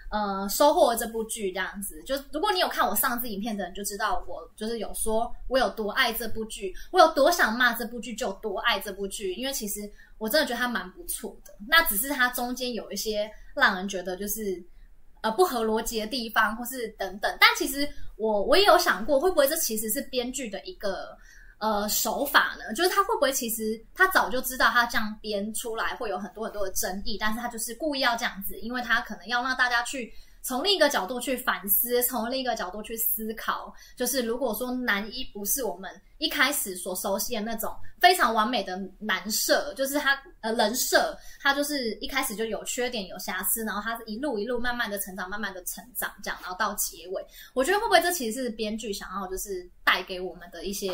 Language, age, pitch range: Chinese, 20-39, 205-255 Hz